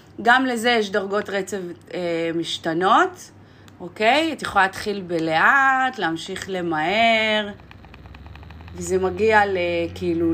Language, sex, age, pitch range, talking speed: Hebrew, female, 30-49, 160-205 Hz, 100 wpm